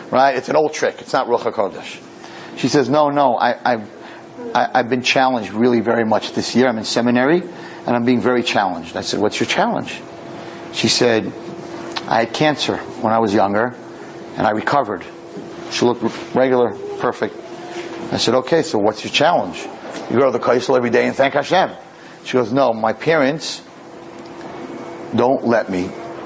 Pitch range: 115-170 Hz